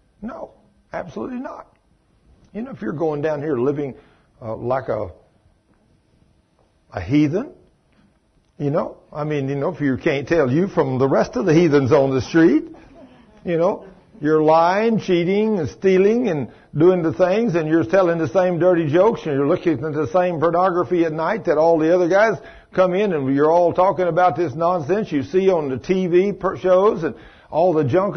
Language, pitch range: English, 140-185 Hz